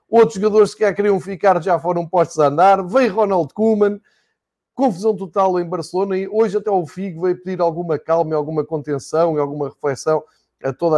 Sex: male